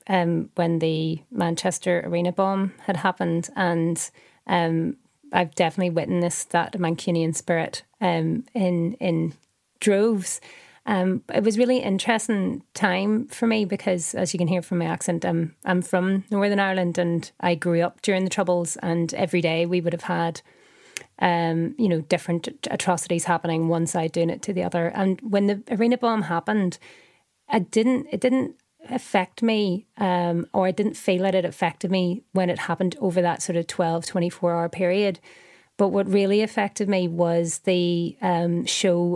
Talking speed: 170 wpm